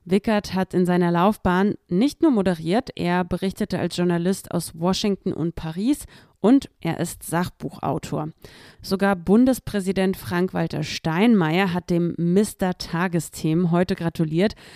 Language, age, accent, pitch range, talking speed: German, 30-49, German, 165-200 Hz, 120 wpm